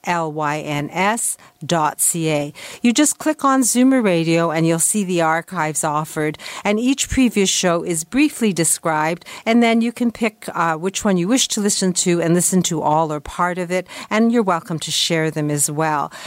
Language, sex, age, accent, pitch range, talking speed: English, female, 50-69, American, 160-205 Hz, 190 wpm